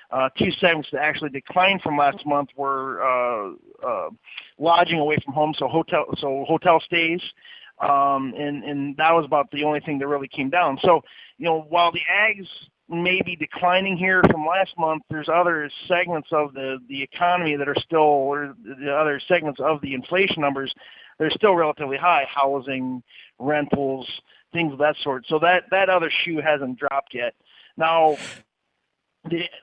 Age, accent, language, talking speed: 50-69, American, English, 170 wpm